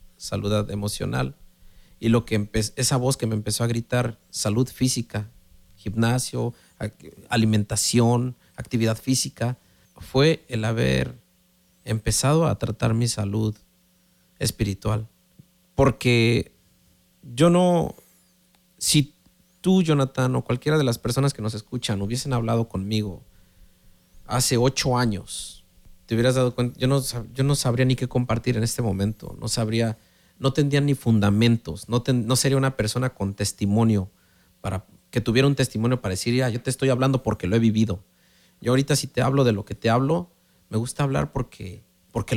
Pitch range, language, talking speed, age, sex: 105-135 Hz, Spanish, 150 wpm, 40-59, male